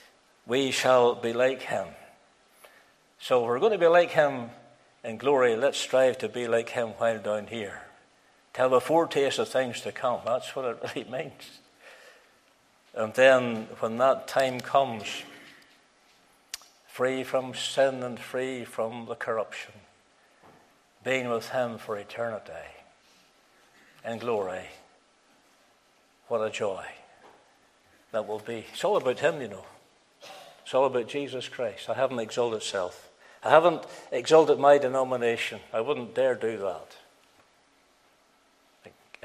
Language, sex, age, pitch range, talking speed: English, male, 60-79, 115-130 Hz, 135 wpm